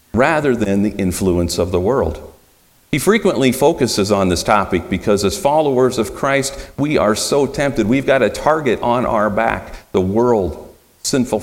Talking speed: 170 wpm